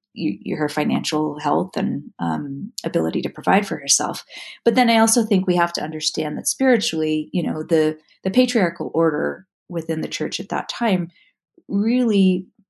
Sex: female